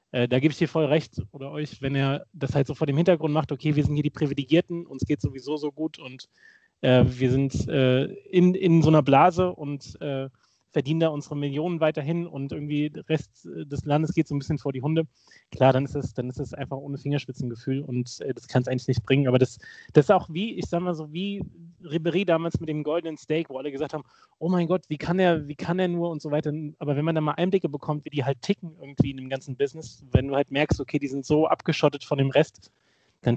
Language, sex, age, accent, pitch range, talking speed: German, male, 30-49, German, 135-160 Hz, 240 wpm